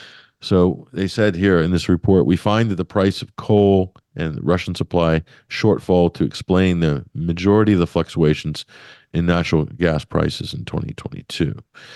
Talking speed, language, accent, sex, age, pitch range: 155 wpm, English, American, male, 50-69, 85-100 Hz